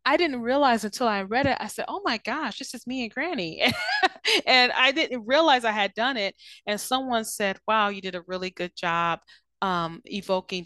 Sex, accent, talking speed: female, American, 210 wpm